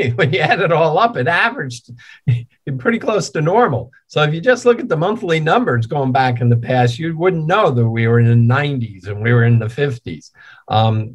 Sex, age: male, 50-69